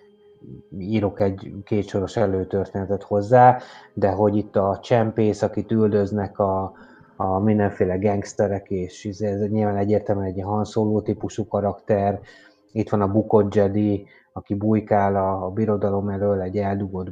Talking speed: 125 wpm